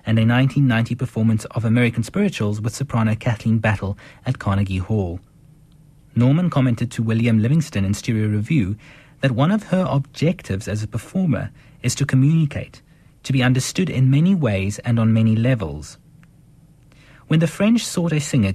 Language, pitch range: English, 110-145 Hz